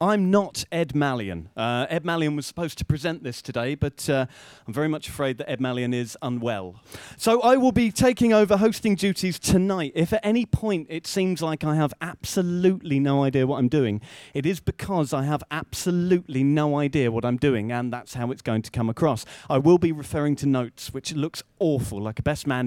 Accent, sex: British, male